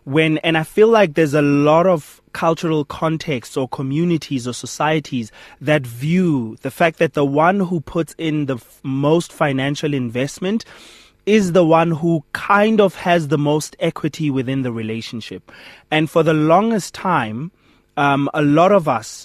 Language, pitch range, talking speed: English, 135-165 Hz, 160 wpm